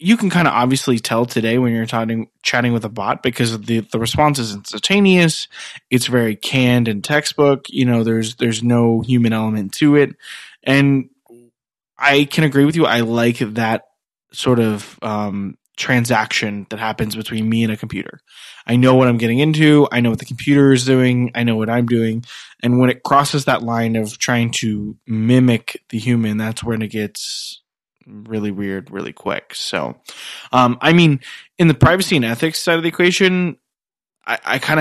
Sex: male